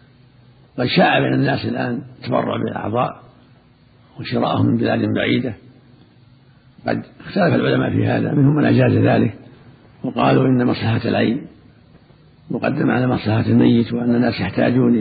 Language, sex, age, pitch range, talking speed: Arabic, male, 60-79, 115-135 Hz, 120 wpm